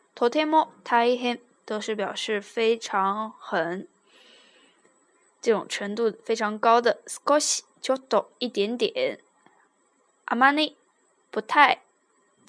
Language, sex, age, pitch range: Chinese, female, 10-29, 210-260 Hz